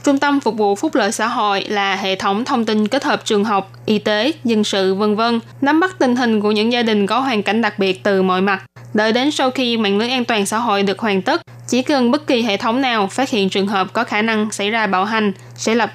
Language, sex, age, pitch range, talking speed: Vietnamese, female, 10-29, 195-240 Hz, 265 wpm